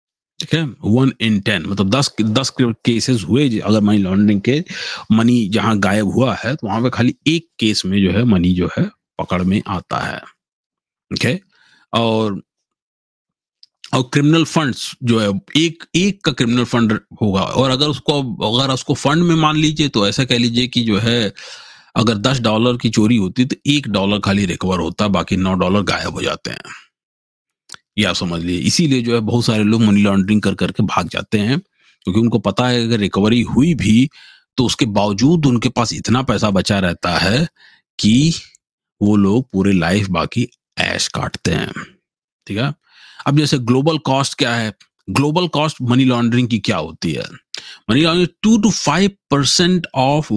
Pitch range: 105-135 Hz